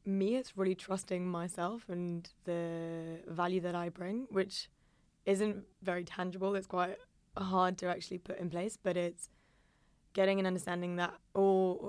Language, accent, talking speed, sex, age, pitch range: English, British, 150 wpm, female, 20-39, 170-190 Hz